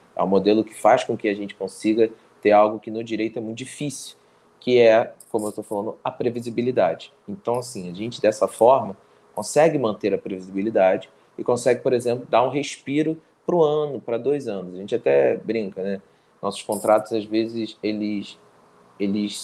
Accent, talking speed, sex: Brazilian, 185 wpm, male